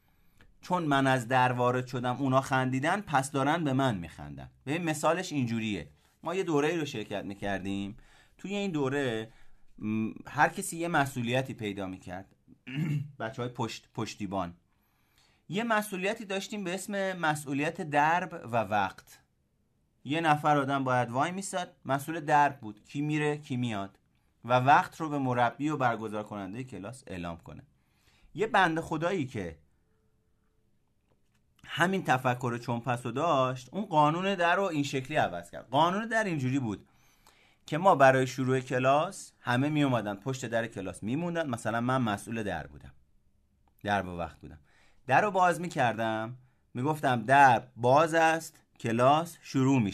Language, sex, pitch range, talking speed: Persian, male, 110-155 Hz, 150 wpm